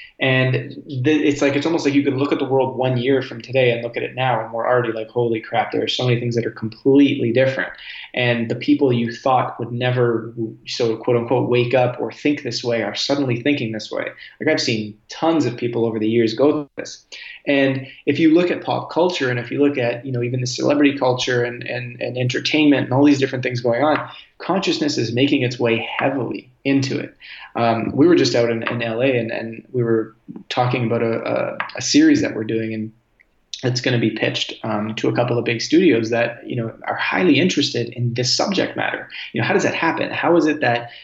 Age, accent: 20-39, American